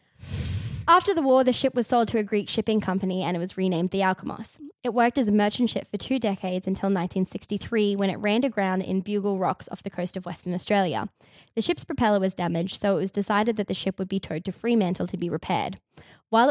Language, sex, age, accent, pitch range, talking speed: English, female, 10-29, Australian, 190-240 Hz, 230 wpm